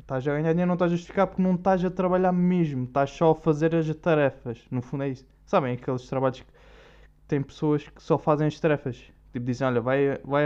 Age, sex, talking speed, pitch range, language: 20-39, male, 230 wpm, 130-180 Hz, Portuguese